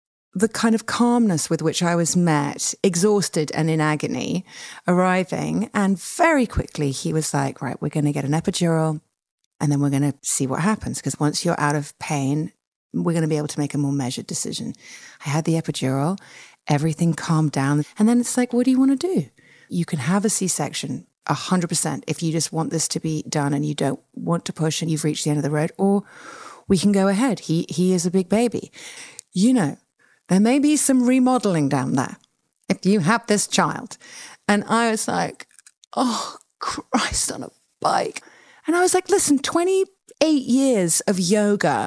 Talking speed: 200 wpm